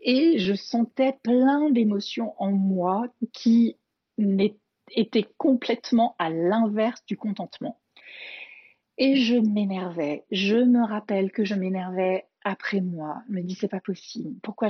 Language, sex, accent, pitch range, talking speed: French, female, French, 195-255 Hz, 130 wpm